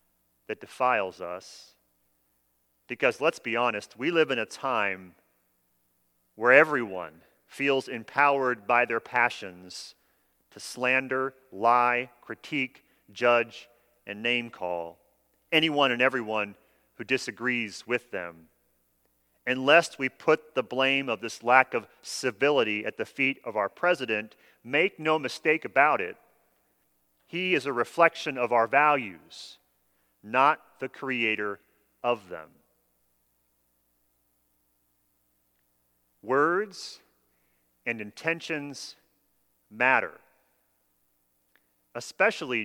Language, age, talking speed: English, 40-59, 105 wpm